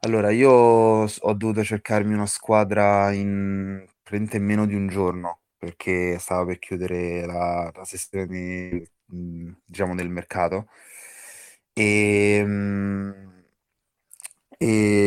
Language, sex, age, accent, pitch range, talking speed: Italian, male, 30-49, native, 95-105 Hz, 100 wpm